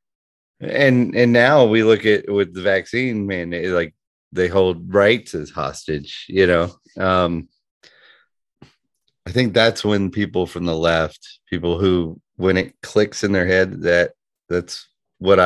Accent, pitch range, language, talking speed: American, 80-105 Hz, English, 150 wpm